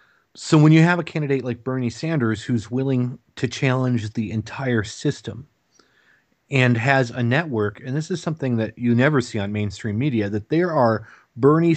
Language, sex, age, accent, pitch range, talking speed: English, male, 30-49, American, 110-130 Hz, 180 wpm